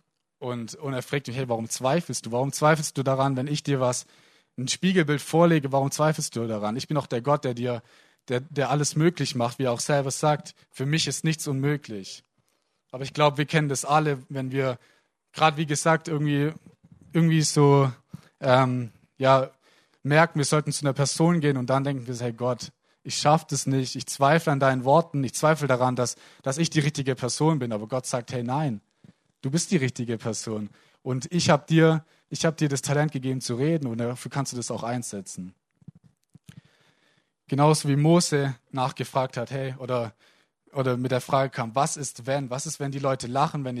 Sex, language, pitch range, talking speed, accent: male, German, 125-155 Hz, 200 wpm, German